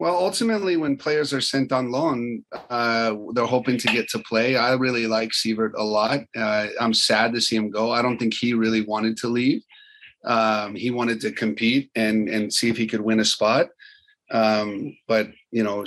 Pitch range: 110-125 Hz